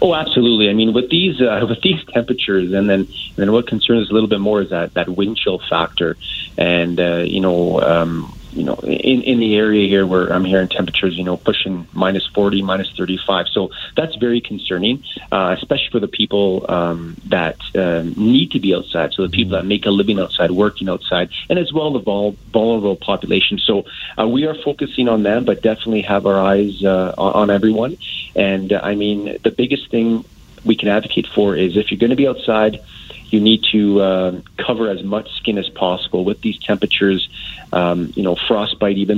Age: 30-49